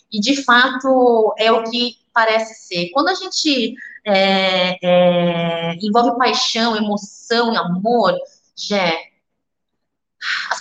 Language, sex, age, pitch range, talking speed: Portuguese, female, 20-39, 195-240 Hz, 105 wpm